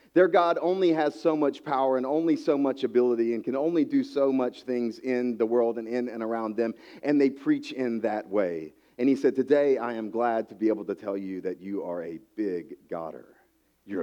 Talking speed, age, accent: 225 wpm, 40-59, American